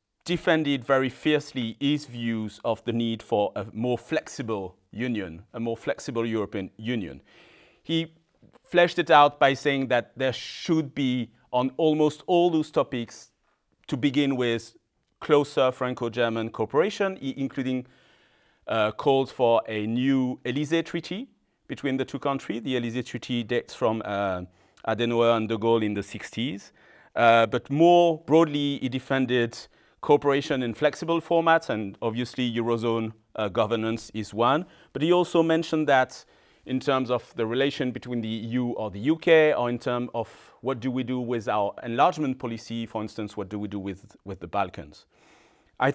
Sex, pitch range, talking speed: male, 115-140 Hz, 155 wpm